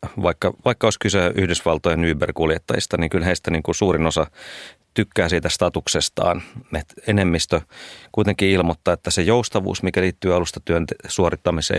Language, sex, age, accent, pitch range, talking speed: Finnish, male, 30-49, native, 80-95 Hz, 145 wpm